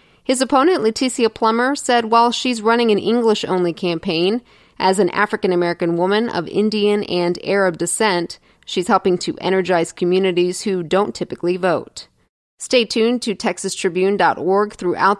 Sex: female